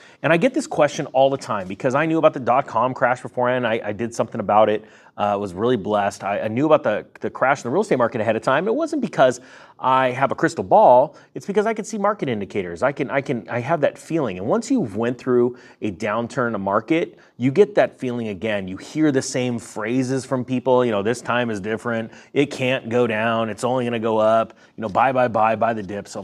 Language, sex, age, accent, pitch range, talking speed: English, male, 30-49, American, 115-145 Hz, 260 wpm